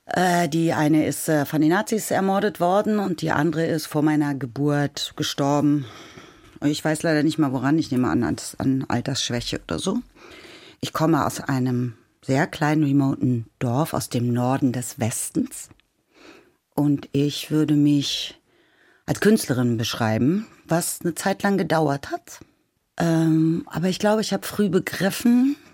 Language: German